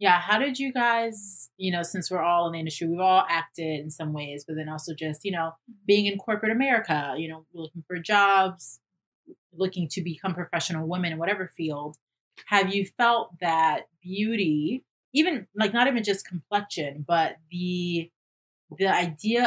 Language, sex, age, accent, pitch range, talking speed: English, female, 30-49, American, 160-205 Hz, 175 wpm